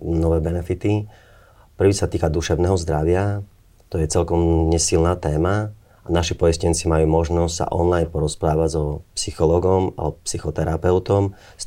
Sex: male